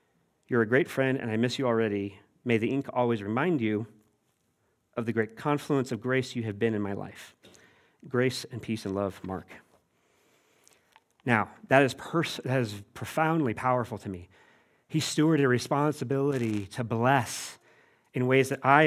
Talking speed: 170 wpm